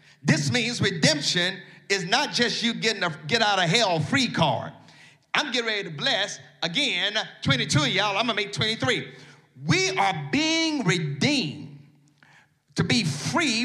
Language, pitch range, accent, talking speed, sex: English, 150-235 Hz, American, 140 wpm, male